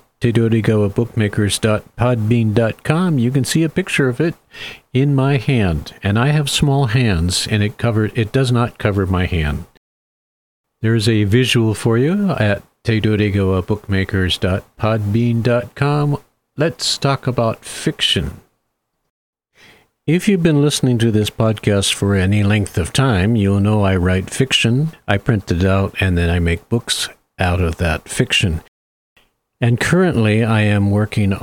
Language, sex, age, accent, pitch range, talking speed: English, male, 50-69, American, 95-120 Hz, 135 wpm